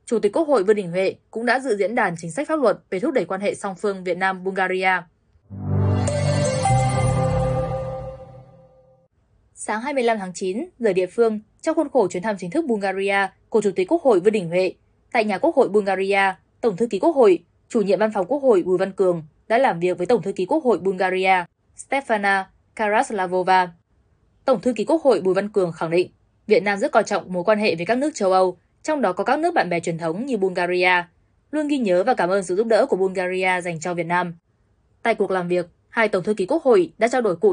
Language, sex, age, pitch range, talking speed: Vietnamese, female, 10-29, 175-225 Hz, 230 wpm